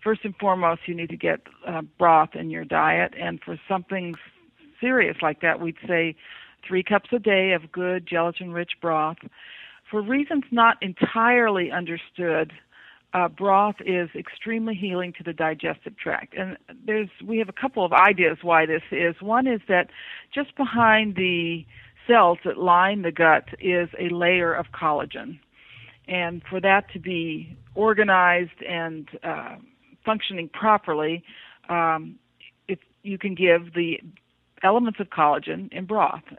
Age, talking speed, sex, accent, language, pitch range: 50-69, 150 wpm, female, American, English, 165-205 Hz